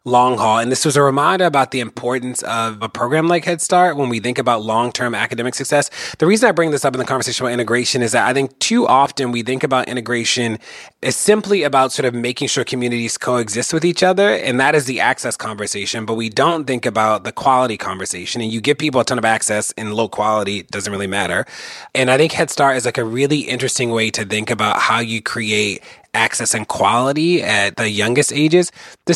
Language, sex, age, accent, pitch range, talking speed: English, male, 30-49, American, 115-155 Hz, 225 wpm